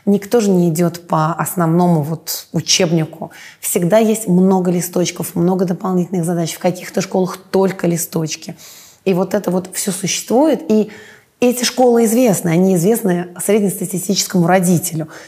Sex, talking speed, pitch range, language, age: female, 130 wpm, 170-195 Hz, Russian, 20-39